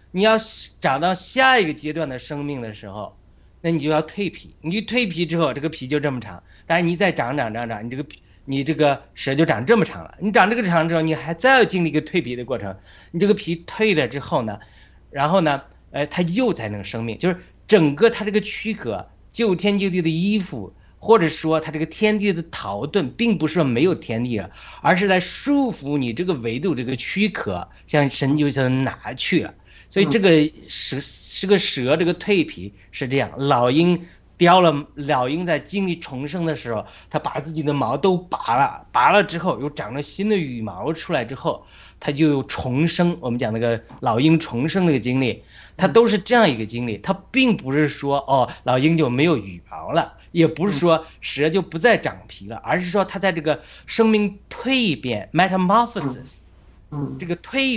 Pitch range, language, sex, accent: 130-190 Hz, Chinese, male, native